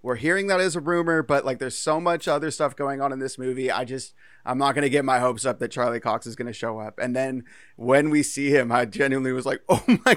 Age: 30-49